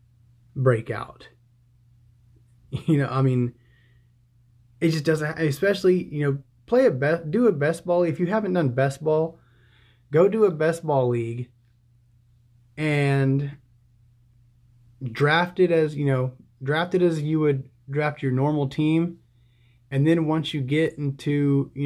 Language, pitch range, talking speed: English, 120-150 Hz, 145 wpm